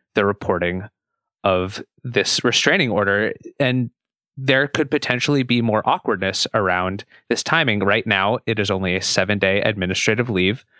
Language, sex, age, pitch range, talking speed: English, male, 20-39, 95-115 Hz, 145 wpm